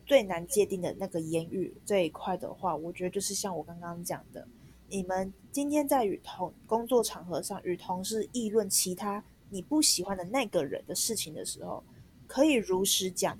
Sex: female